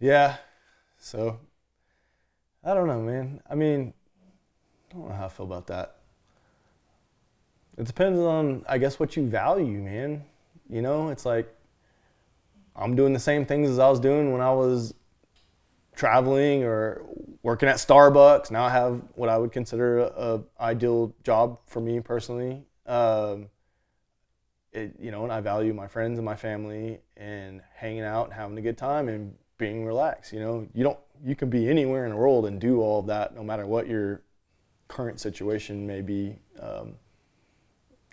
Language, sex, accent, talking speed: English, male, American, 170 wpm